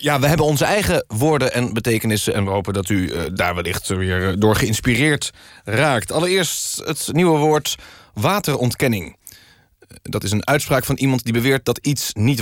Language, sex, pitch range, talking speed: Dutch, male, 100-140 Hz, 170 wpm